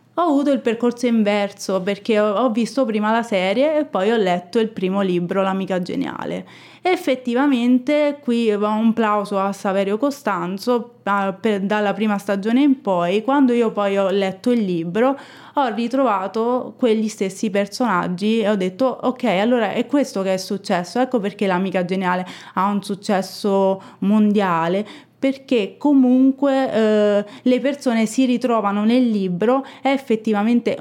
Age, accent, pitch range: 20-39, native, 200-245 Hz